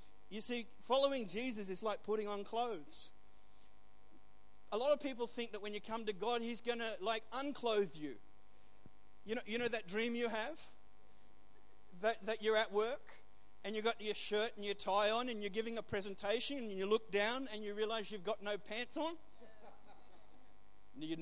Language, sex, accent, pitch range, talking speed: English, male, Australian, 200-245 Hz, 185 wpm